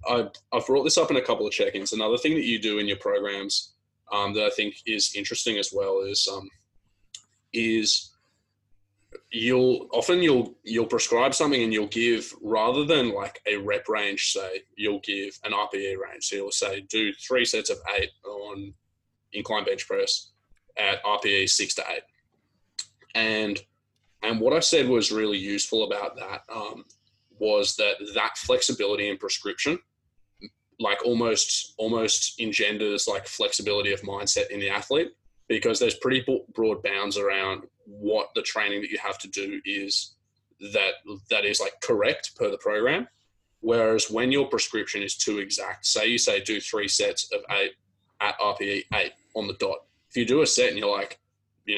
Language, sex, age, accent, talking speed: English, male, 20-39, Australian, 170 wpm